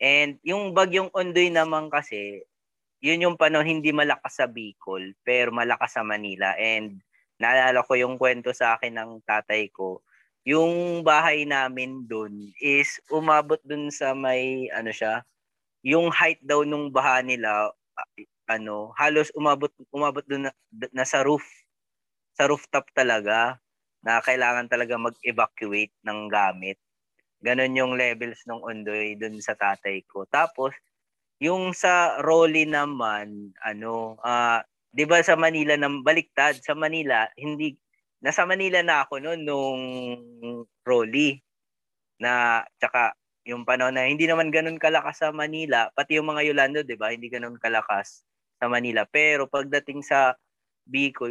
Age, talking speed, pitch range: 20-39, 140 wpm, 115-150 Hz